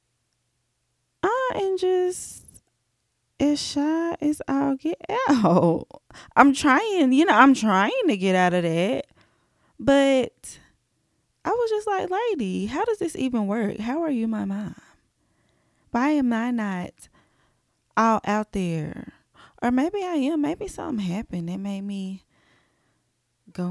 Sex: female